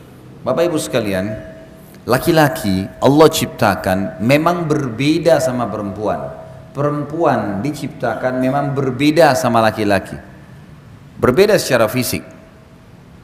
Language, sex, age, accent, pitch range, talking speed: Indonesian, male, 40-59, native, 115-160 Hz, 80 wpm